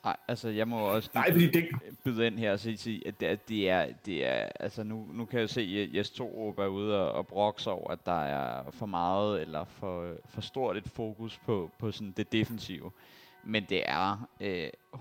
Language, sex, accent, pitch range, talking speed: Danish, male, native, 100-115 Hz, 200 wpm